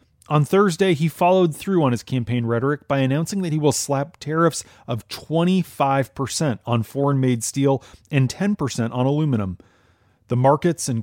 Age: 30-49